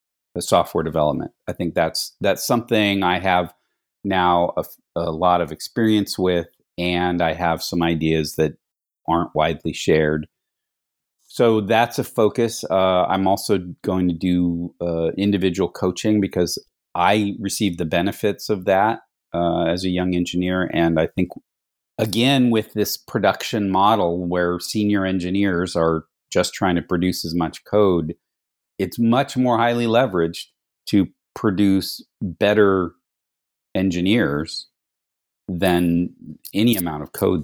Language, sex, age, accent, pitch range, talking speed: English, male, 40-59, American, 85-105 Hz, 135 wpm